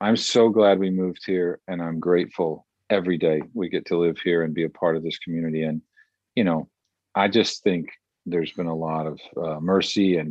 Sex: male